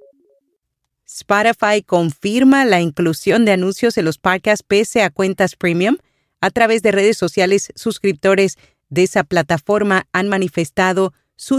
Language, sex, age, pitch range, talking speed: Spanish, female, 40-59, 165-200 Hz, 130 wpm